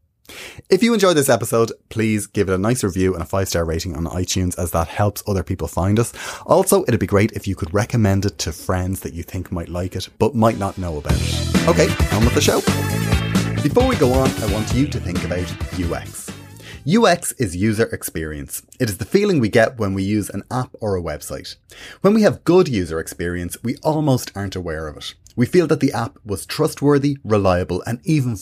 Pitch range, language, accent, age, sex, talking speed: 90-130 Hz, English, Irish, 30-49, male, 220 wpm